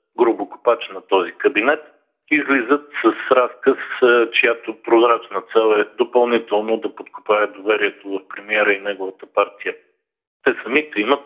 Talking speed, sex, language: 130 wpm, male, Bulgarian